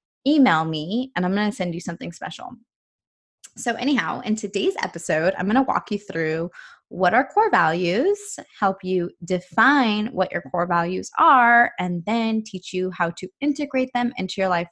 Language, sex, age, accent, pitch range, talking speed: English, female, 20-39, American, 175-235 Hz, 180 wpm